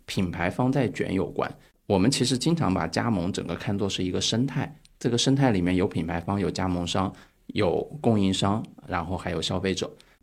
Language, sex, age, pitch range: Chinese, male, 20-39, 90-115 Hz